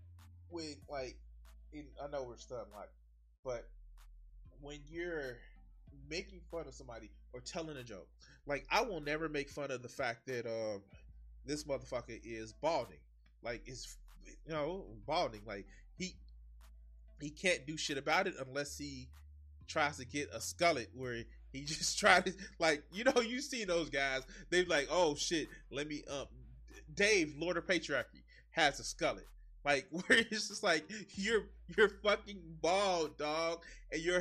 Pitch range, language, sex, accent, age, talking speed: 110-170 Hz, English, male, American, 20-39, 165 wpm